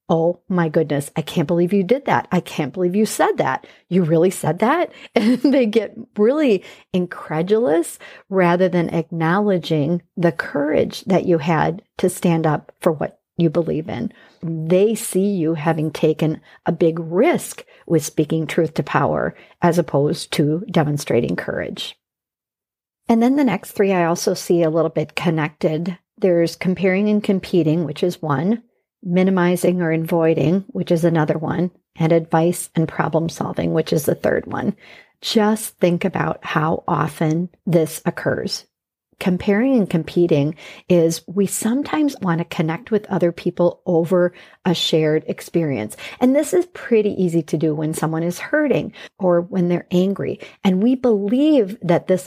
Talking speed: 155 wpm